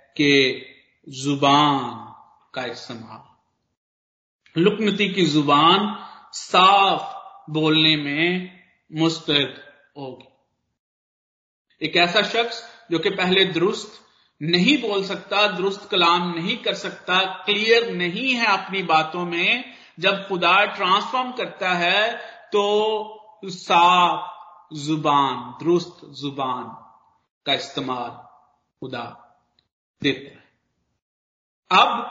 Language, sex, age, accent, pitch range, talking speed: Hindi, male, 50-69, native, 170-230 Hz, 90 wpm